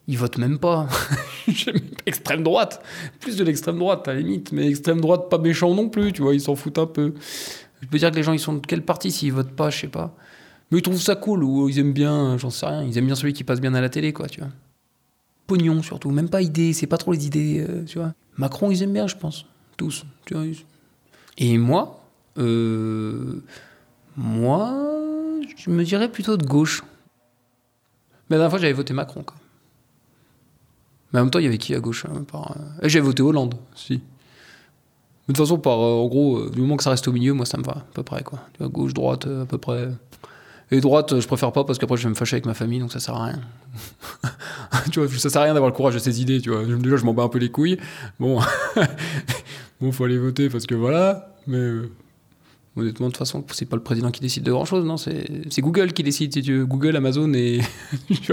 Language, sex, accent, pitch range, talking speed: French, male, French, 125-160 Hz, 235 wpm